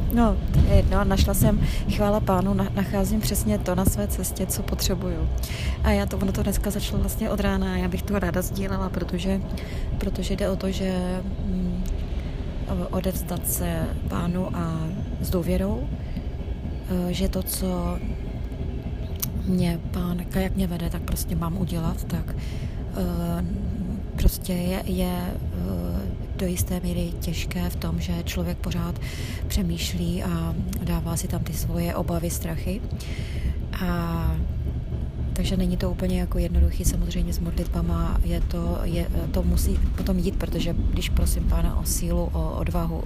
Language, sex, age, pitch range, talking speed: Czech, female, 20-39, 80-90 Hz, 150 wpm